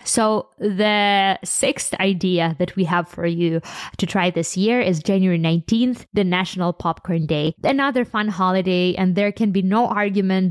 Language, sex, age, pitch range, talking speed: English, female, 20-39, 180-220 Hz, 165 wpm